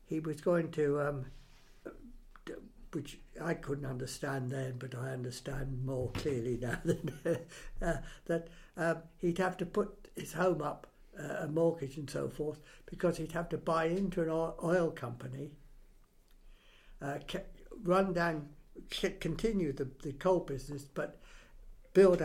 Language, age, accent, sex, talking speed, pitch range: English, 60-79, British, male, 145 wpm, 145-180 Hz